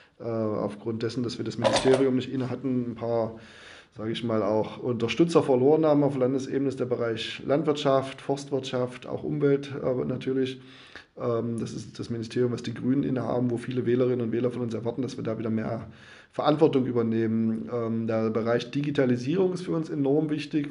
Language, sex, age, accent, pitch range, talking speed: German, male, 20-39, German, 115-130 Hz, 175 wpm